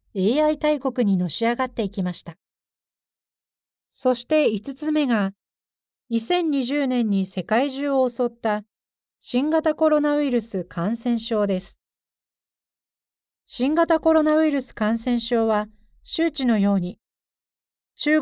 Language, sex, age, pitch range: Japanese, female, 40-59, 200-270 Hz